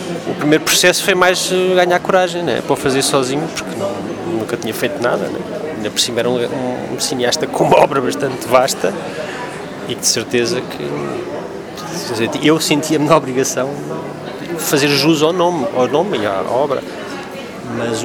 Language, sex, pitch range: Portuguese, male, 145-190 Hz